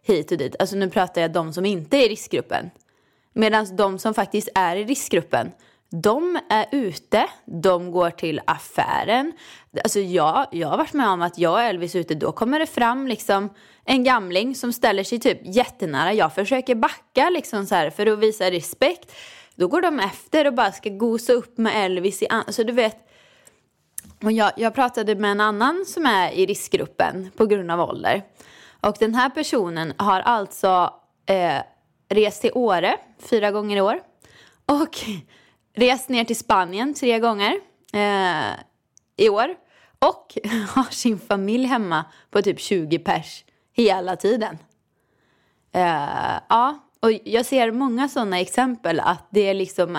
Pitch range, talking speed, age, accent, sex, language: 190-255 Hz, 170 wpm, 20-39, native, female, Swedish